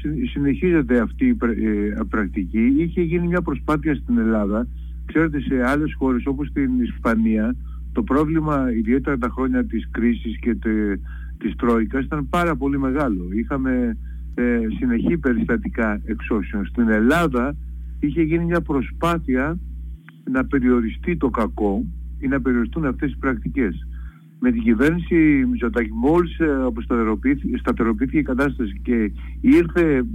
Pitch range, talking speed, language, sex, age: 105-165 Hz, 125 wpm, Greek, male, 50-69